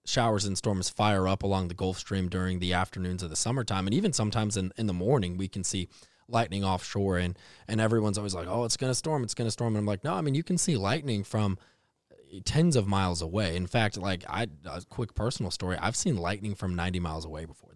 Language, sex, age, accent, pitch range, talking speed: English, male, 20-39, American, 90-110 Hz, 240 wpm